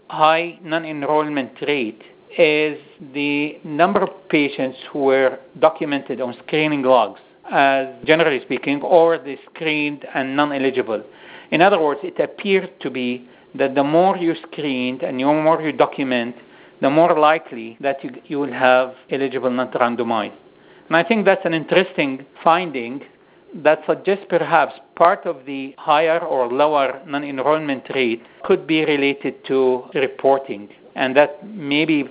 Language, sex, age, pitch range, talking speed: English, male, 50-69, 130-155 Hz, 140 wpm